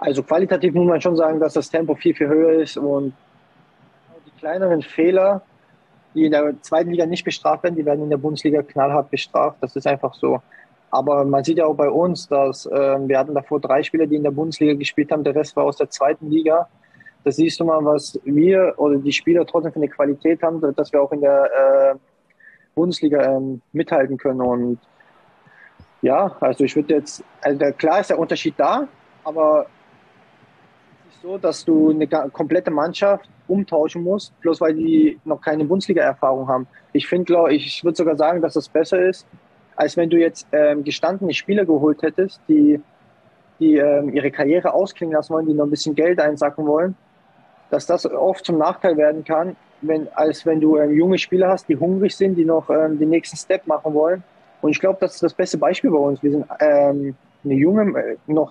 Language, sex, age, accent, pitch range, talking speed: German, male, 20-39, German, 145-175 Hz, 195 wpm